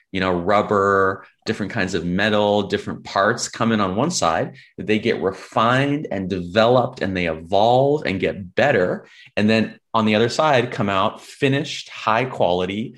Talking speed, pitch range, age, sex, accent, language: 165 wpm, 100-135 Hz, 30-49, male, American, English